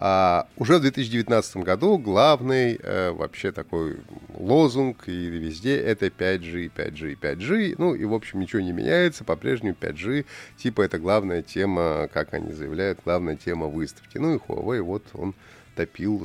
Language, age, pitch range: Russian, 30-49, 95-135 Hz